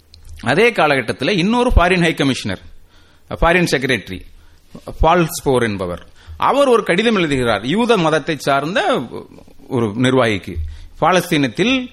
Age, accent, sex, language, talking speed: 30-49, native, male, Tamil, 95 wpm